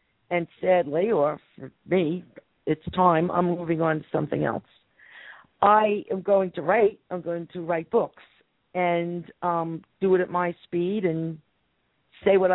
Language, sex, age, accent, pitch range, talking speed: English, female, 50-69, American, 170-205 Hz, 160 wpm